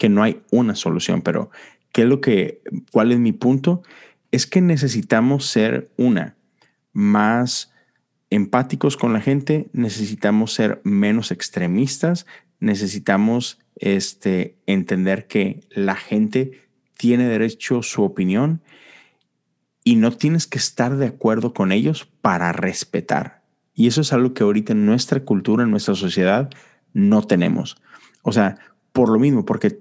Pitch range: 95-160 Hz